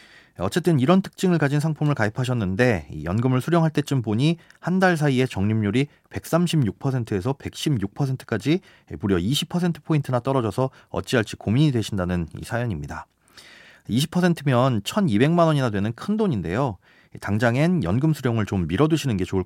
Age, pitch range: 30-49, 105-155 Hz